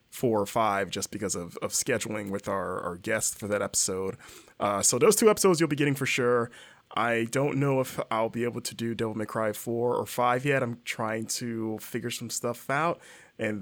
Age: 20-39